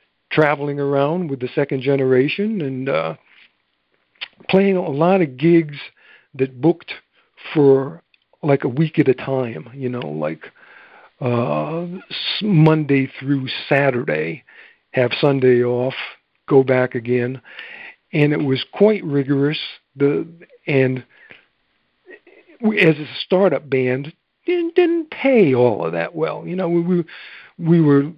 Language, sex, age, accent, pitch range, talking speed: English, male, 60-79, American, 130-170 Hz, 125 wpm